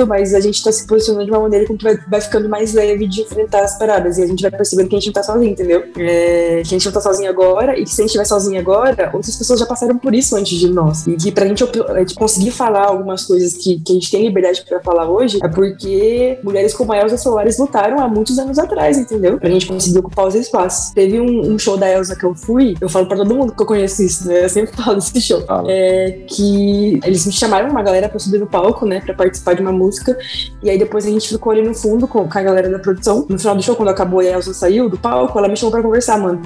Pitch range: 185-215 Hz